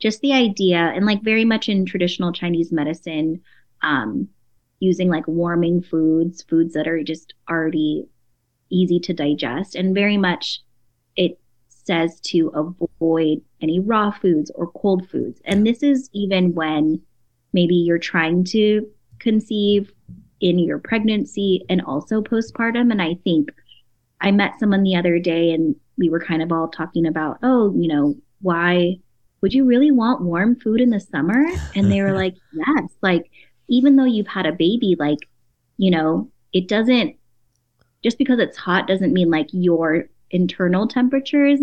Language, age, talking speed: English, 20-39, 160 wpm